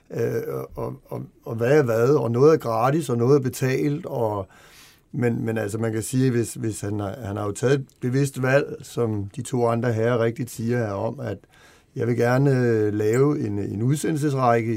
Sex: male